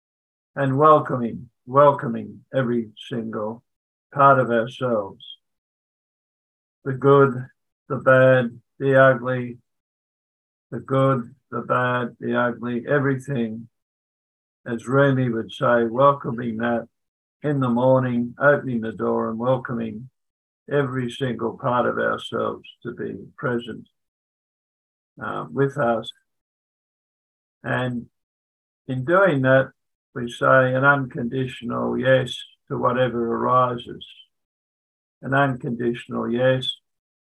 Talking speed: 100 wpm